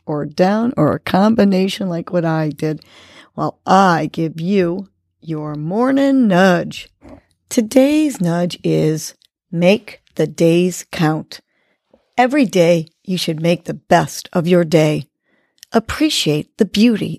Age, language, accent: 50-69, English, American